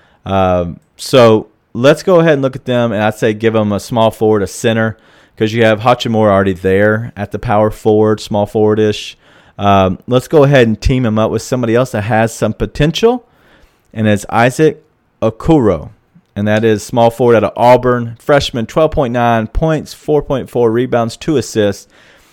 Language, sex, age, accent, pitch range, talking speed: English, male, 40-59, American, 100-120 Hz, 175 wpm